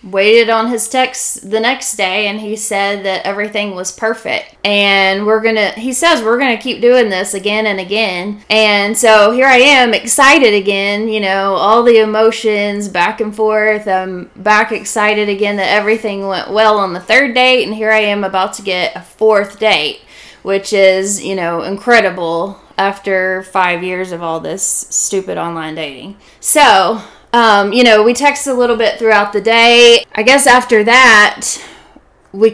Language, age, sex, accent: English, 20-39, female, American